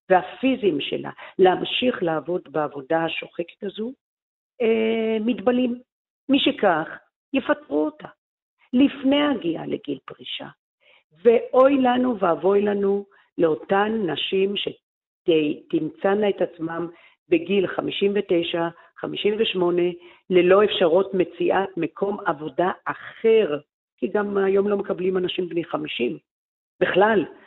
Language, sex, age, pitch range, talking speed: Hebrew, female, 50-69, 165-220 Hz, 95 wpm